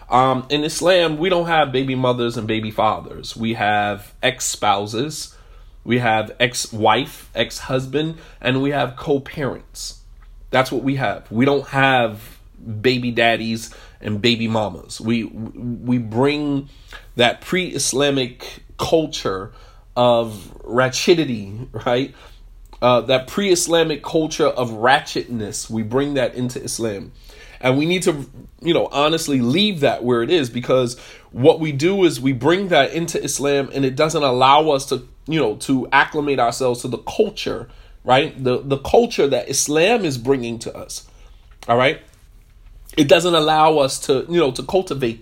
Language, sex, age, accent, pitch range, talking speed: English, male, 30-49, American, 115-145 Hz, 145 wpm